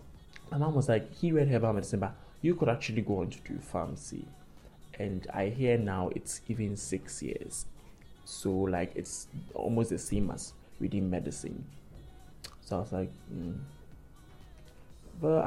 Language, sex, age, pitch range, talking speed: English, male, 20-39, 95-150 Hz, 160 wpm